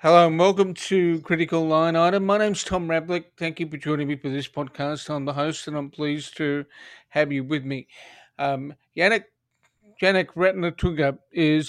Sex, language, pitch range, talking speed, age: male, English, 140-170 Hz, 180 wpm, 50-69